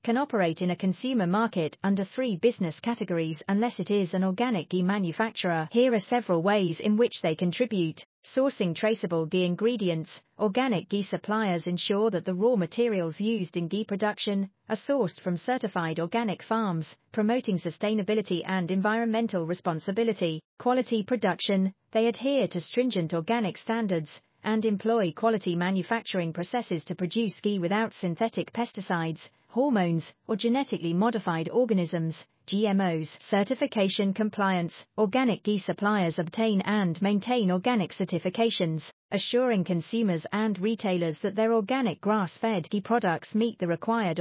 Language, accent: English, British